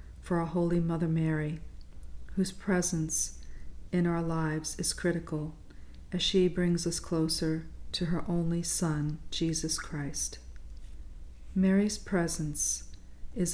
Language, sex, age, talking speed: English, female, 40-59, 115 wpm